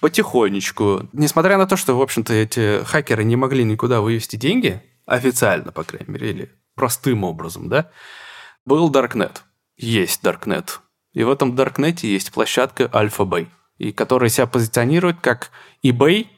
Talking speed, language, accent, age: 140 wpm, Russian, native, 20-39